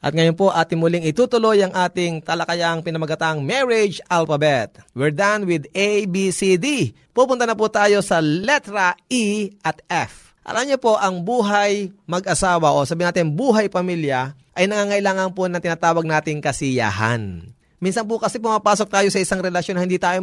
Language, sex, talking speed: Filipino, male, 165 wpm